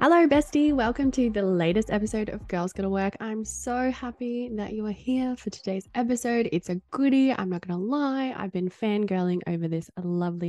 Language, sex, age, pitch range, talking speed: English, female, 10-29, 175-235 Hz, 195 wpm